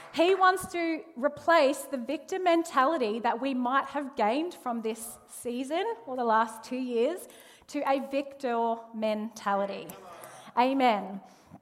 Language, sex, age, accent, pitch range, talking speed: English, female, 30-49, Australian, 225-285 Hz, 130 wpm